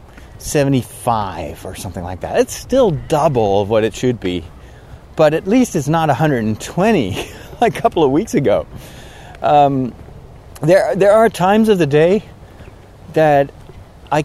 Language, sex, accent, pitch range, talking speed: English, male, American, 110-150 Hz, 145 wpm